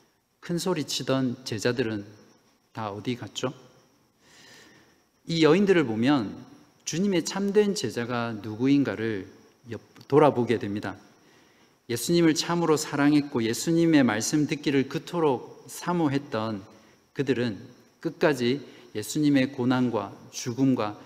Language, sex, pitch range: Korean, male, 110-145 Hz